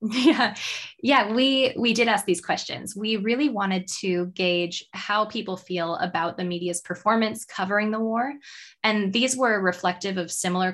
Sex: female